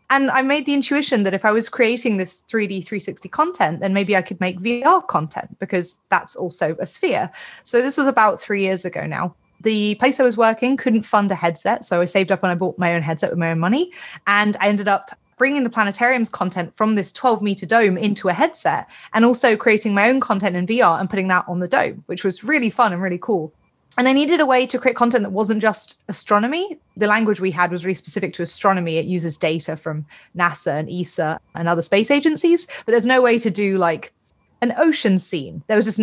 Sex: female